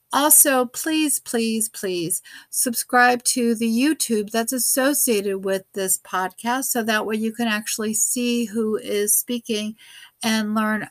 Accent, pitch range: American, 195-235 Hz